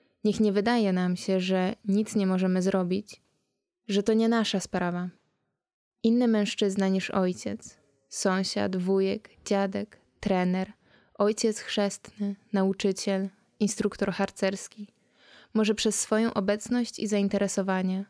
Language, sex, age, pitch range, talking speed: Polish, female, 20-39, 190-210 Hz, 115 wpm